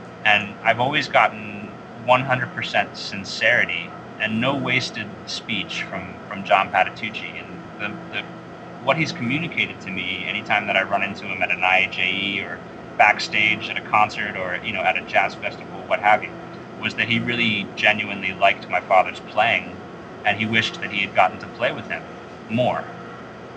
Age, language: 30-49, English